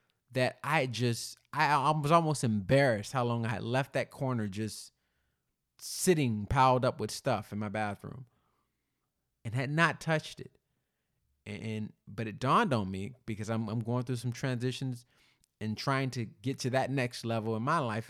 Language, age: English, 20-39